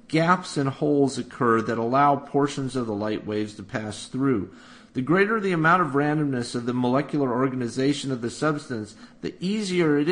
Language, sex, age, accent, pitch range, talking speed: English, male, 40-59, American, 120-160 Hz, 180 wpm